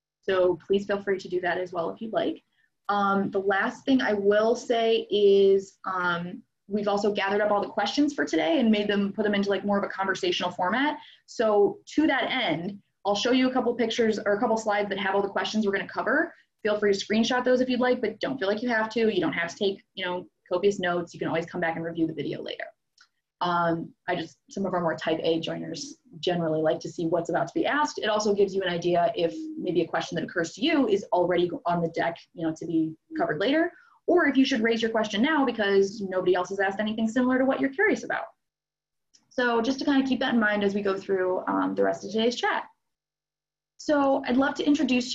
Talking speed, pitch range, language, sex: 245 wpm, 180-250 Hz, English, female